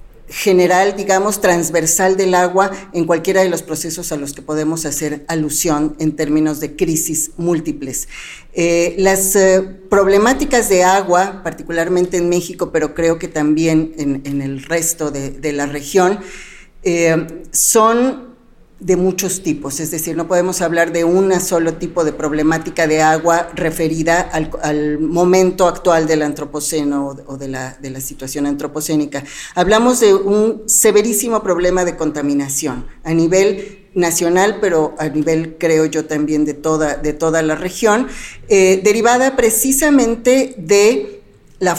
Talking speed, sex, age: 140 wpm, female, 40-59